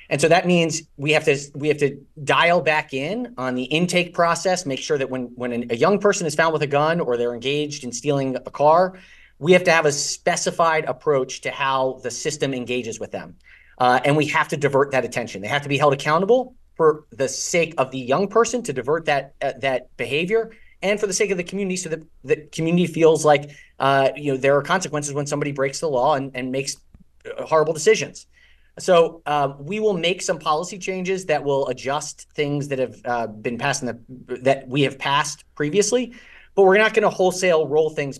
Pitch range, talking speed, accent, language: 135-175 Hz, 220 wpm, American, English